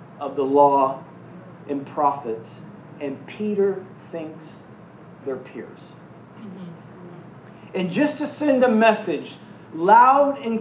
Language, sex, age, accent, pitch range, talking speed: English, male, 40-59, American, 150-200 Hz, 100 wpm